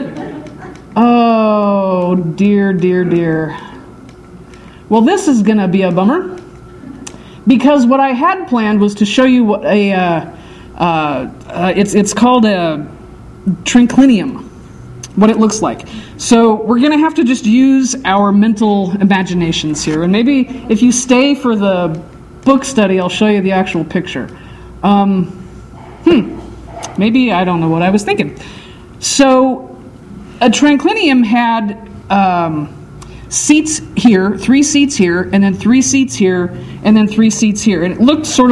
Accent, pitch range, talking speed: American, 185-240 Hz, 150 wpm